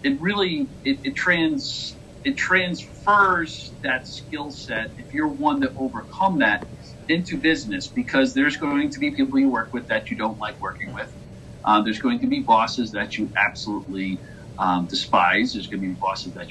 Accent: American